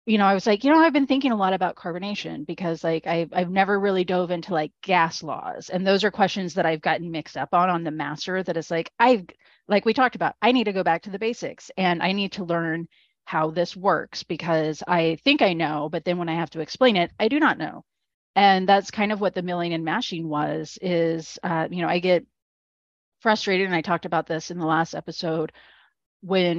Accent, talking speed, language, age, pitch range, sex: American, 240 wpm, English, 30-49, 160-190 Hz, female